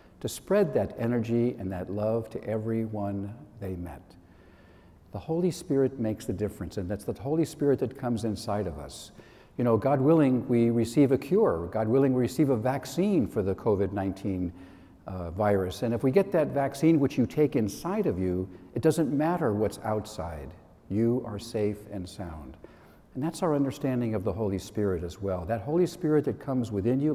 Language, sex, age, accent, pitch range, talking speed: English, male, 60-79, American, 100-130 Hz, 190 wpm